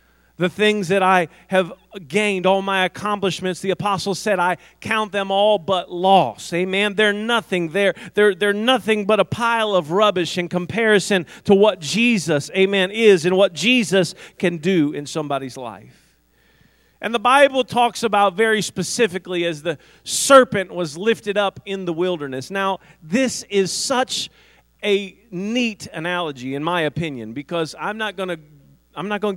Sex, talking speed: male, 160 wpm